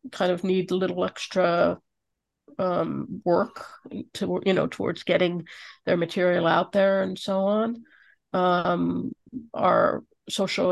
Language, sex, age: English, female, 50-69